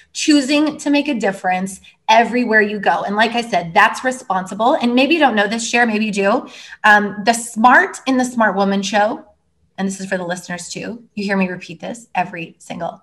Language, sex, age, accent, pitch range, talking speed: English, female, 20-39, American, 185-250 Hz, 210 wpm